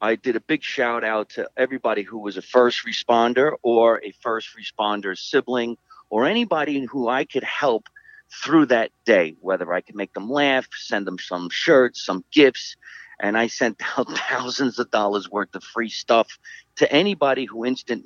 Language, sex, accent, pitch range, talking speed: English, male, American, 100-130 Hz, 180 wpm